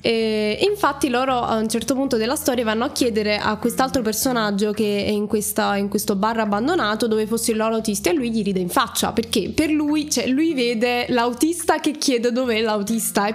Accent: native